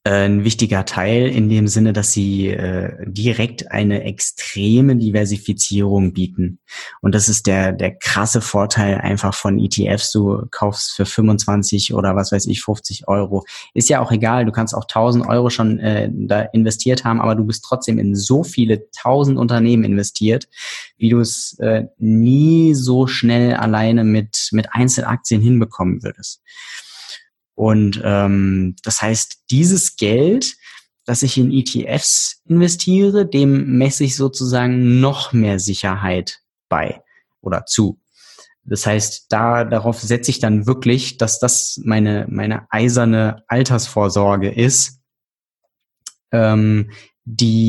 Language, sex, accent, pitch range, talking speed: German, male, German, 100-120 Hz, 135 wpm